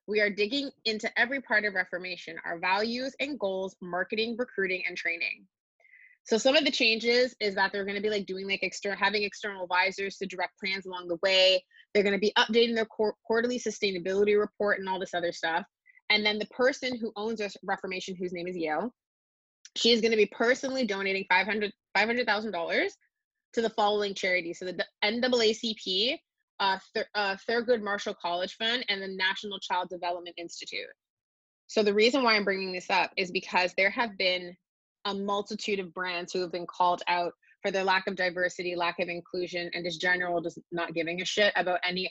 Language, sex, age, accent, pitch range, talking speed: English, female, 20-39, American, 180-225 Hz, 190 wpm